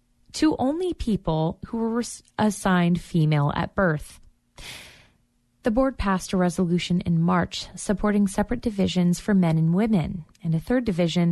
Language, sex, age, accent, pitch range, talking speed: English, female, 20-39, American, 165-210 Hz, 145 wpm